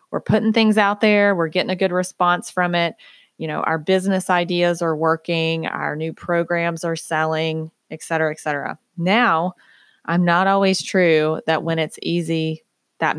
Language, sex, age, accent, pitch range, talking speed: English, female, 20-39, American, 160-195 Hz, 175 wpm